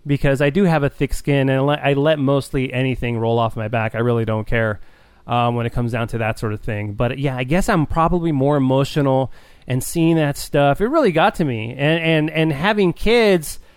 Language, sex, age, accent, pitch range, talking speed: English, male, 30-49, American, 120-155 Hz, 225 wpm